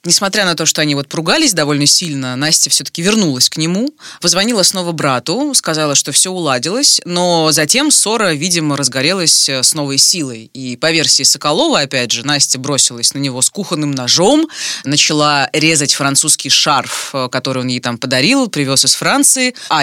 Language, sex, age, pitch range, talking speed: Russian, female, 20-39, 140-190 Hz, 165 wpm